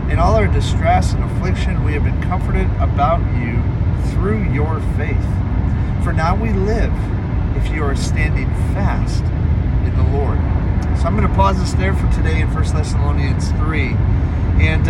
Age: 40-59